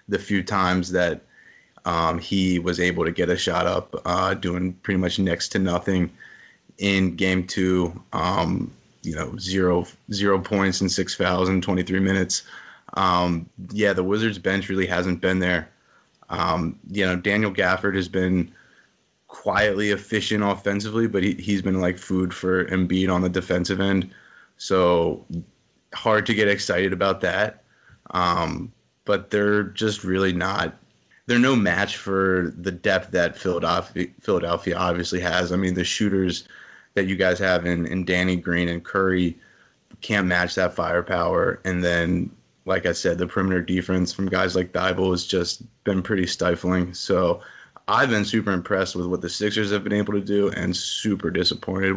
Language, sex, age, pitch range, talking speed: English, male, 20-39, 90-100 Hz, 160 wpm